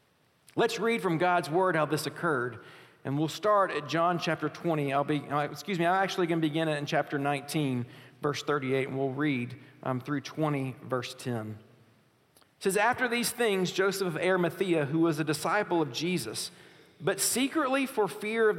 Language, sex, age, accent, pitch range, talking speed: English, male, 50-69, American, 145-185 Hz, 180 wpm